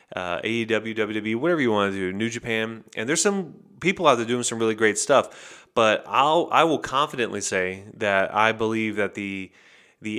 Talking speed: 195 wpm